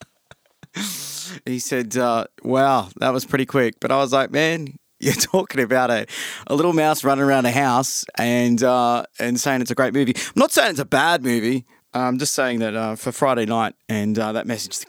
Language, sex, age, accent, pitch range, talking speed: English, male, 20-39, Australian, 110-140 Hz, 205 wpm